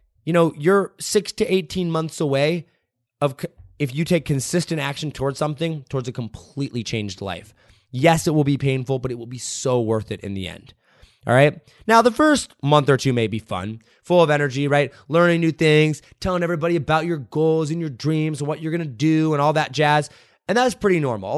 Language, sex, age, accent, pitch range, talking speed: English, male, 20-39, American, 125-175 Hz, 215 wpm